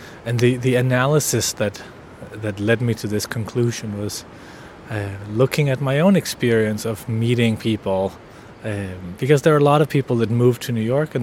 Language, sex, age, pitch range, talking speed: English, male, 30-49, 110-130 Hz, 185 wpm